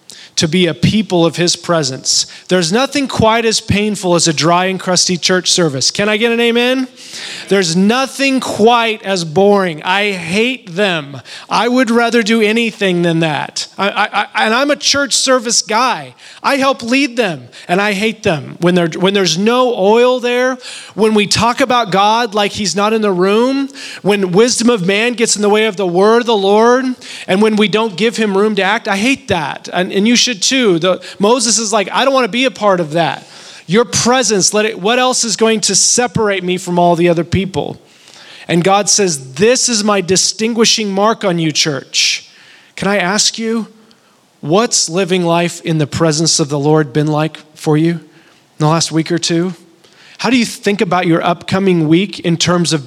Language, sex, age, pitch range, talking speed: English, male, 30-49, 175-225 Hz, 200 wpm